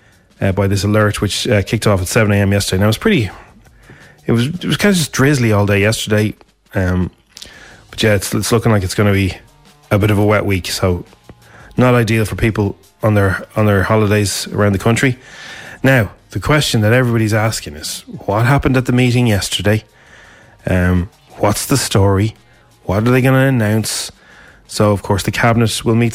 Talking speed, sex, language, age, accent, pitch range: 200 wpm, male, English, 20-39, Irish, 105-120 Hz